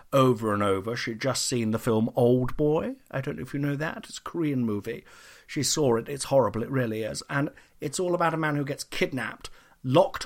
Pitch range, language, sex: 115-170 Hz, English, male